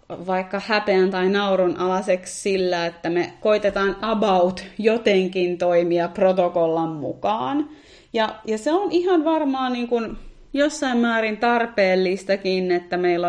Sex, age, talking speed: female, 30-49, 120 wpm